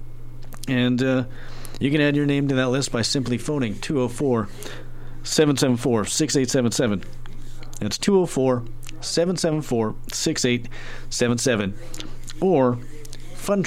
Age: 40-59